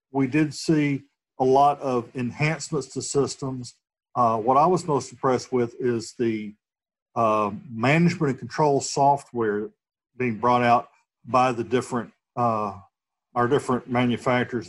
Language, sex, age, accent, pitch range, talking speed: English, male, 50-69, American, 115-135 Hz, 135 wpm